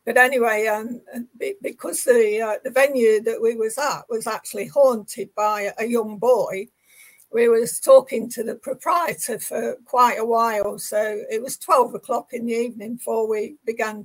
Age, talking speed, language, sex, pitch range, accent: 60-79, 170 wpm, English, female, 230-285 Hz, British